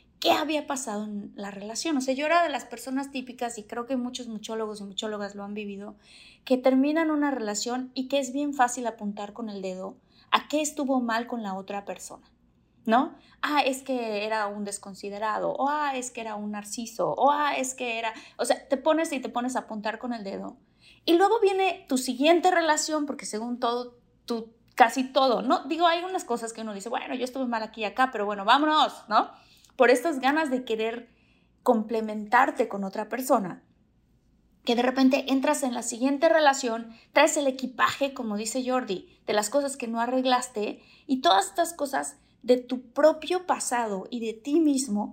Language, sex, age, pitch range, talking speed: Spanish, female, 20-39, 220-280 Hz, 195 wpm